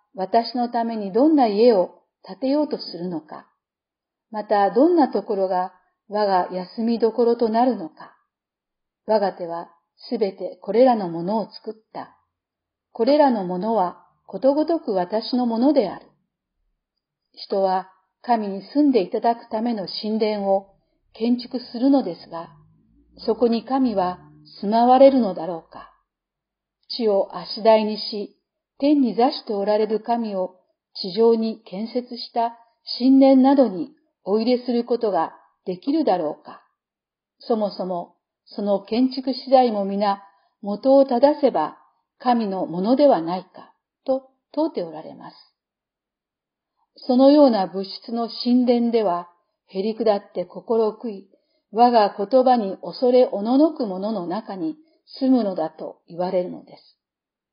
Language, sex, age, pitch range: Japanese, female, 50-69, 195-255 Hz